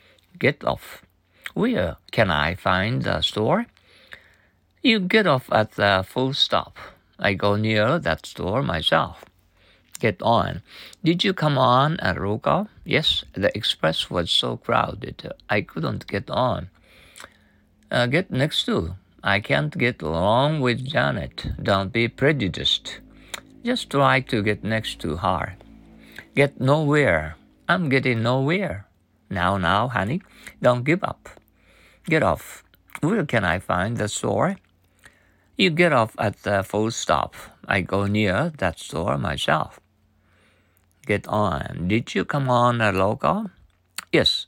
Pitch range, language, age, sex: 95-135 Hz, Japanese, 50-69, male